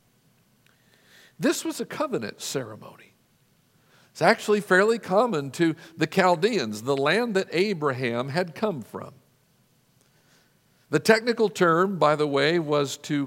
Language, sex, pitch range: English, male, 155-210 Hz